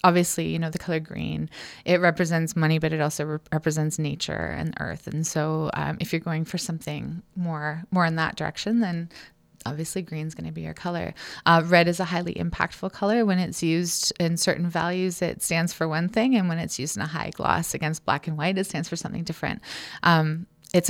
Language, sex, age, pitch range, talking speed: English, female, 20-39, 155-180 Hz, 220 wpm